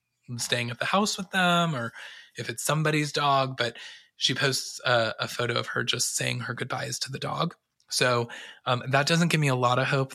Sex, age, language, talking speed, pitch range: male, 20-39, English, 215 wpm, 120-140 Hz